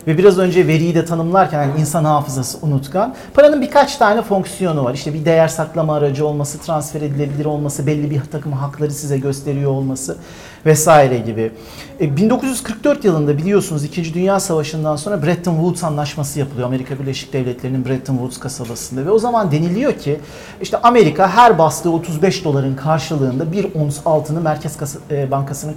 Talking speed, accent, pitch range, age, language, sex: 160 wpm, native, 140-195 Hz, 40-59, Turkish, male